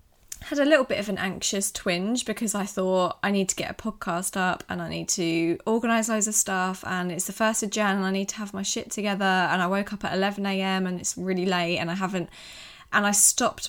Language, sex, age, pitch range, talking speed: English, female, 20-39, 175-205 Hz, 245 wpm